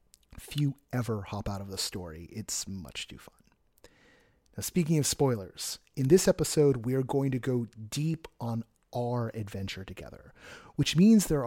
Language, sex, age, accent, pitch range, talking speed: English, male, 30-49, American, 105-145 Hz, 160 wpm